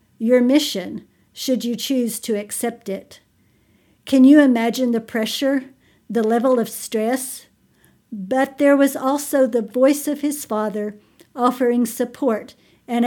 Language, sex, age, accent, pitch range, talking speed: English, female, 60-79, American, 225-260 Hz, 135 wpm